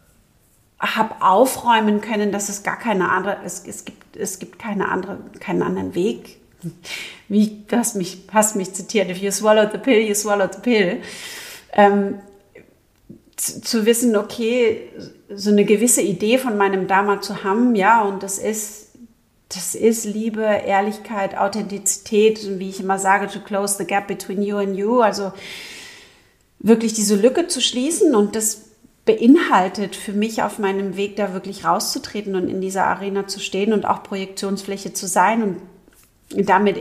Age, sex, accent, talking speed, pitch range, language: 40-59, female, German, 160 wpm, 195-215 Hz, German